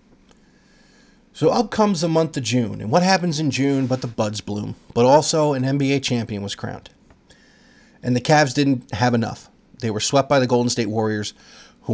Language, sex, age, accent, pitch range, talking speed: English, male, 30-49, American, 115-140 Hz, 190 wpm